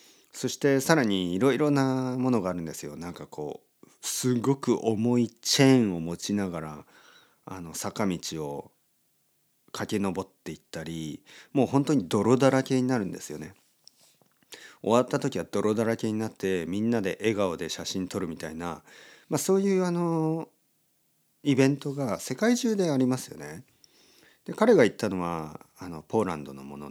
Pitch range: 90-140 Hz